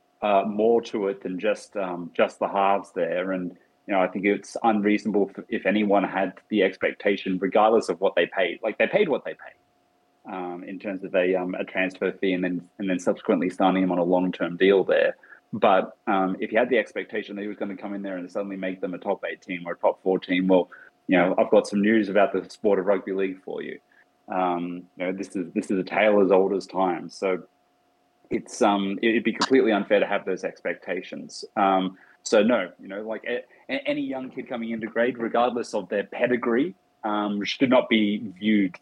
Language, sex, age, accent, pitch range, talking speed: English, male, 30-49, Australian, 95-110 Hz, 225 wpm